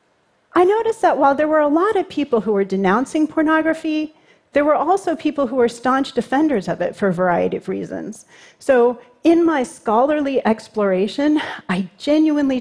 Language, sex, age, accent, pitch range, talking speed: Russian, female, 40-59, American, 195-290 Hz, 170 wpm